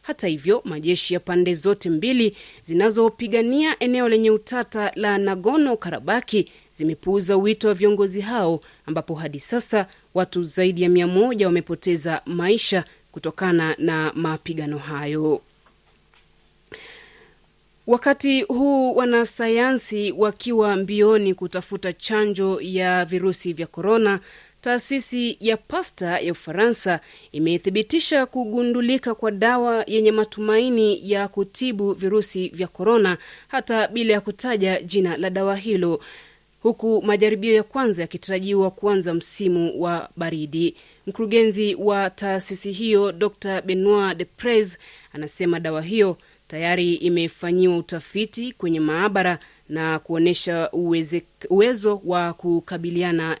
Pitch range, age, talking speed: 175-220 Hz, 30-49, 110 wpm